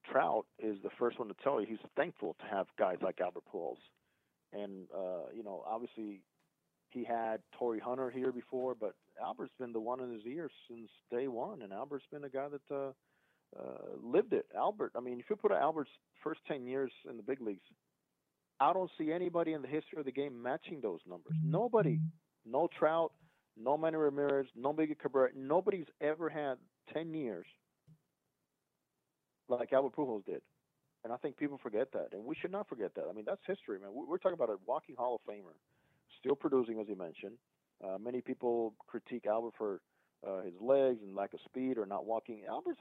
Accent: American